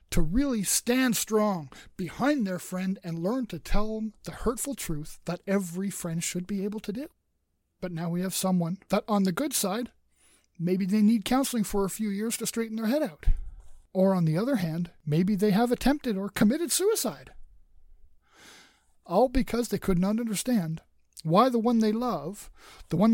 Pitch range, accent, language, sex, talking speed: 185-255 Hz, American, English, male, 185 wpm